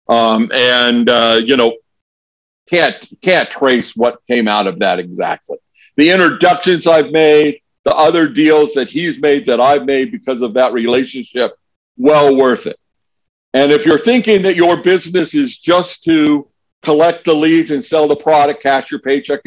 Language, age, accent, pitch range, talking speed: English, 50-69, American, 120-160 Hz, 165 wpm